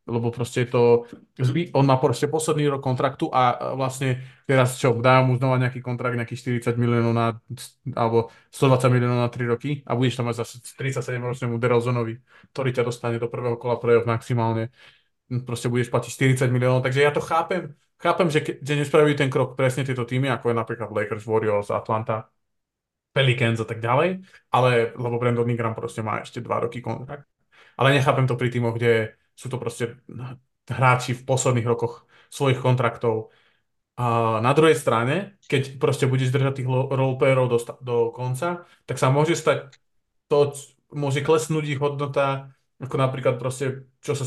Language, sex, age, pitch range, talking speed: Slovak, male, 20-39, 120-135 Hz, 170 wpm